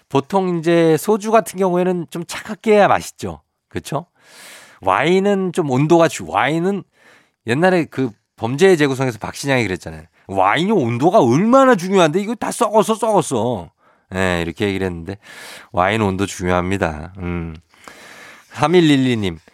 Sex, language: male, Korean